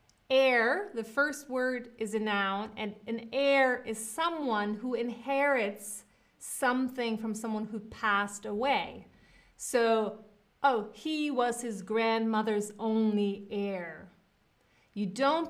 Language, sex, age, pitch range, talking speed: English, female, 30-49, 210-265 Hz, 115 wpm